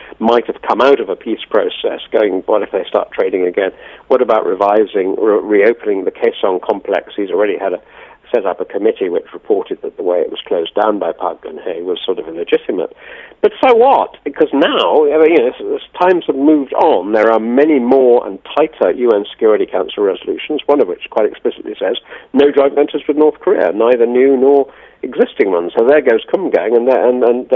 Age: 50-69